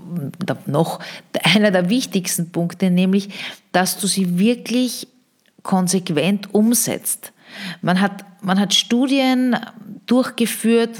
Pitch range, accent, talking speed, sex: 180-225 Hz, Austrian, 100 wpm, female